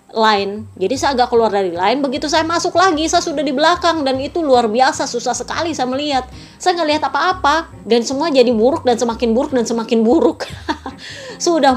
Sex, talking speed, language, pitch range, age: female, 195 wpm, Indonesian, 235-310 Hz, 20-39